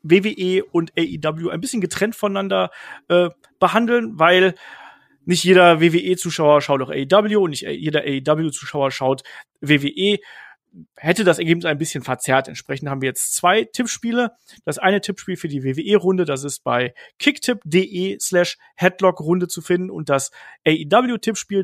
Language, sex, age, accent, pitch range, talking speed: German, male, 40-59, German, 145-190 Hz, 140 wpm